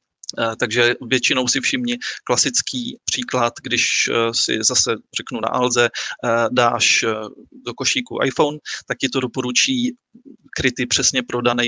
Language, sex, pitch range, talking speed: Czech, male, 115-130 Hz, 125 wpm